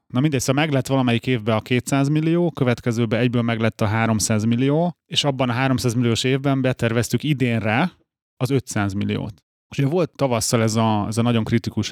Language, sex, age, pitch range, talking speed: Hungarian, male, 30-49, 110-135 Hz, 185 wpm